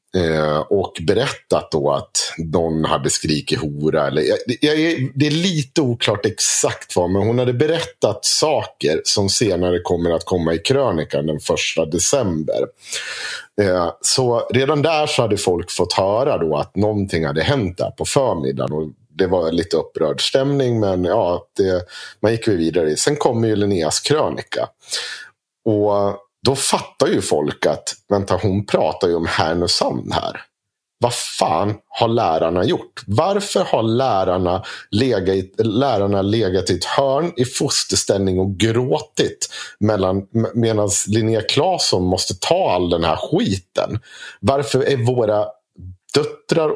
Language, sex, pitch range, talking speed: Swedish, male, 90-125 Hz, 135 wpm